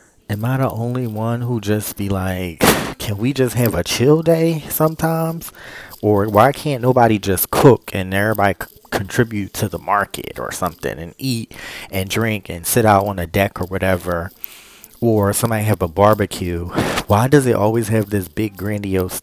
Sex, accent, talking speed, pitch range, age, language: male, American, 175 wpm, 90-110 Hz, 30-49, English